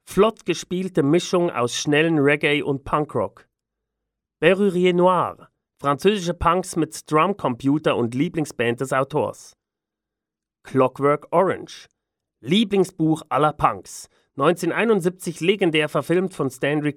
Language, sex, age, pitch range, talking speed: German, male, 40-59, 135-170 Hz, 100 wpm